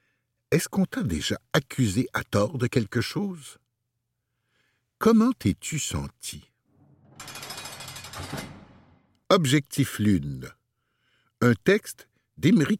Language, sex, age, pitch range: French, male, 60-79, 105-150 Hz